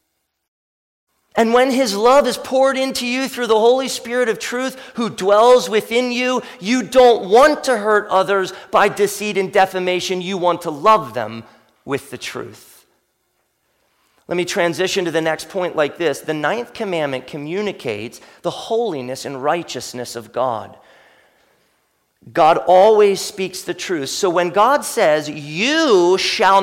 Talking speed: 150 wpm